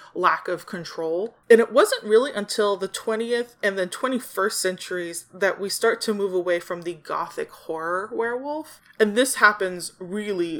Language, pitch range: English, 175-210 Hz